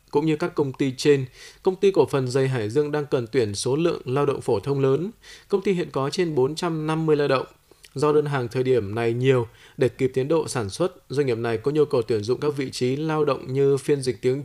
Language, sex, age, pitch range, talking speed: Vietnamese, male, 20-39, 125-155 Hz, 255 wpm